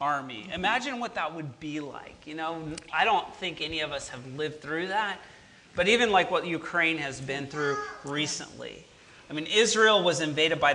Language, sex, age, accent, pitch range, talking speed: English, male, 40-59, American, 155-185 Hz, 190 wpm